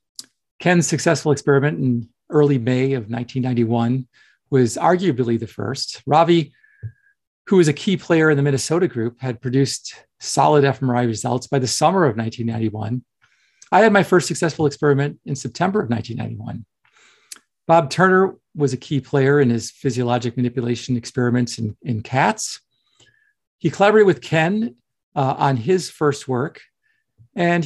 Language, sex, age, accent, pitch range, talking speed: English, male, 40-59, American, 120-155 Hz, 145 wpm